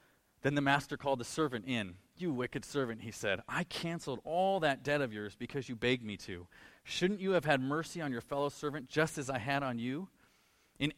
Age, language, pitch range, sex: 40-59, English, 125-170 Hz, male